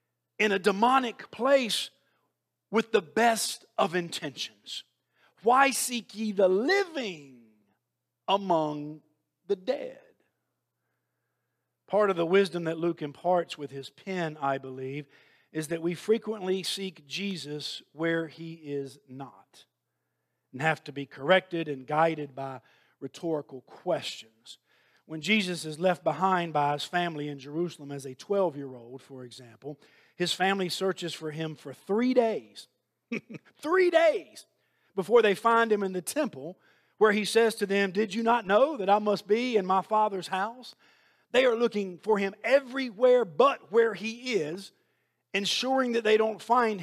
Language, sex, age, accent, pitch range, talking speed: English, male, 50-69, American, 160-225 Hz, 145 wpm